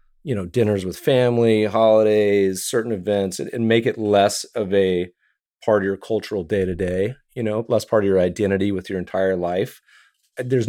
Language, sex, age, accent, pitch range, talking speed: English, male, 40-59, American, 95-115 Hz, 180 wpm